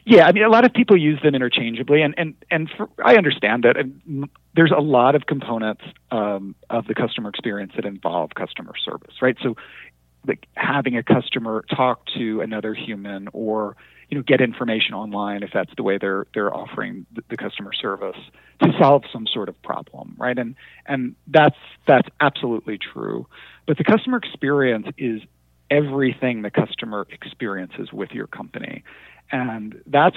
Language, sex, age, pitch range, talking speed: English, male, 40-59, 110-140 Hz, 170 wpm